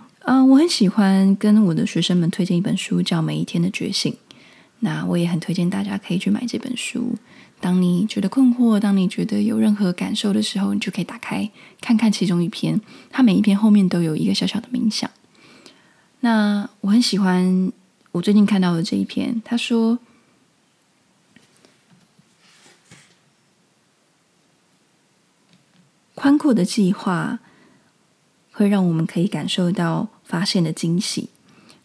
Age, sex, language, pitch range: 20-39, female, Chinese, 180-225 Hz